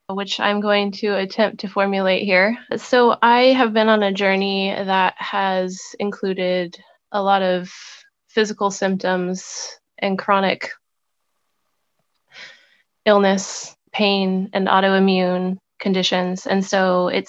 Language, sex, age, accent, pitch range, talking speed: English, female, 20-39, American, 180-205 Hz, 115 wpm